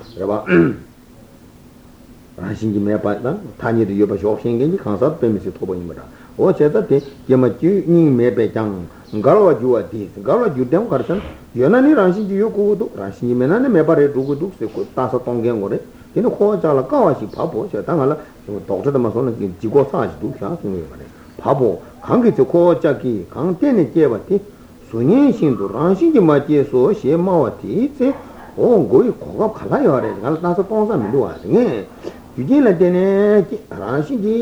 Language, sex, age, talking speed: Italian, male, 60-79, 45 wpm